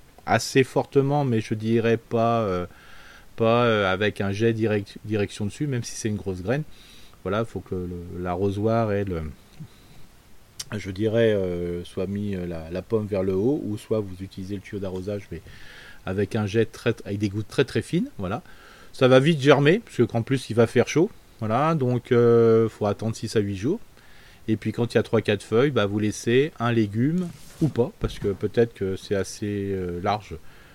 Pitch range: 95-120 Hz